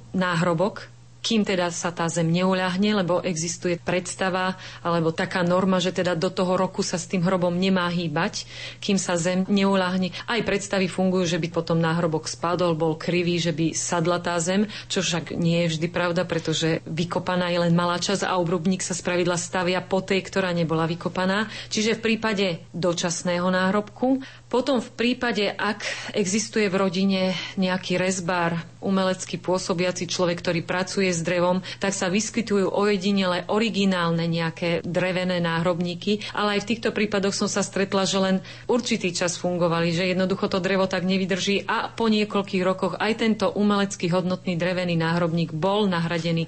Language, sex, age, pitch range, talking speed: Slovak, female, 30-49, 175-200 Hz, 160 wpm